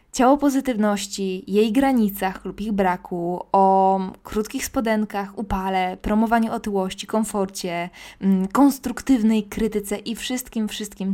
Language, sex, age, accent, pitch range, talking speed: Polish, female, 20-39, native, 190-230 Hz, 100 wpm